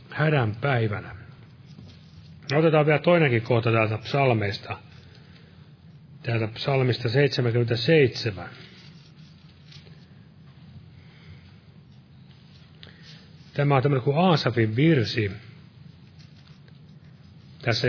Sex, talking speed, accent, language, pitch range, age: male, 60 wpm, native, Finnish, 120-155 Hz, 30-49